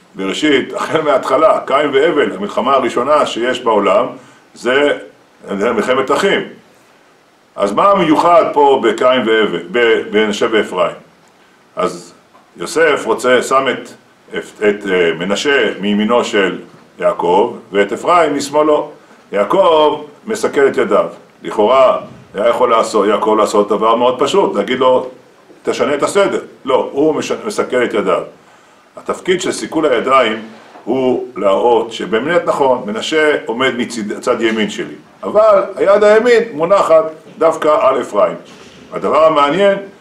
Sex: male